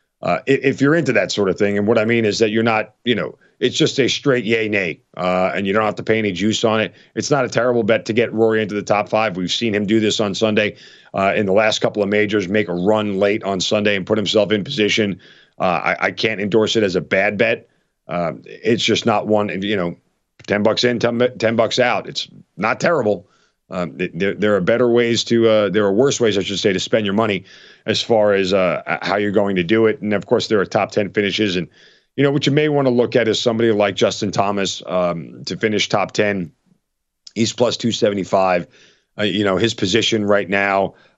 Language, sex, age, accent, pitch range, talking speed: English, male, 40-59, American, 95-115 Hz, 245 wpm